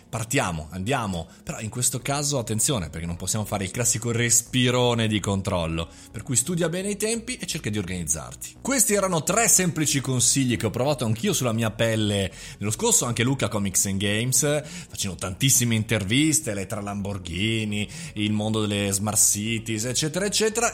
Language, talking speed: Italian, 165 wpm